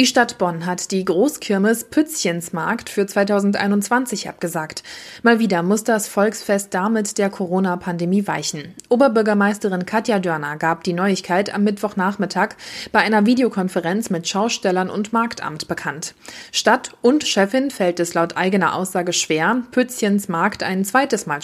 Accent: German